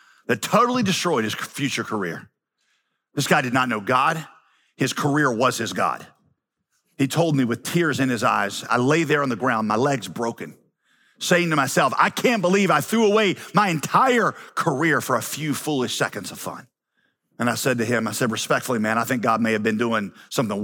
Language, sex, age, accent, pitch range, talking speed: English, male, 40-59, American, 120-195 Hz, 205 wpm